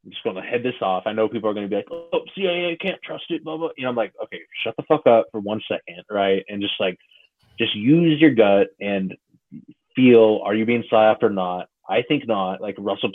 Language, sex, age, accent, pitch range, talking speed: English, male, 20-39, American, 90-110 Hz, 250 wpm